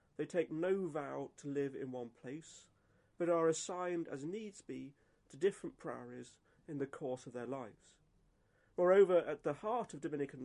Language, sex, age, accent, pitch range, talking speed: English, male, 30-49, British, 130-165 Hz, 170 wpm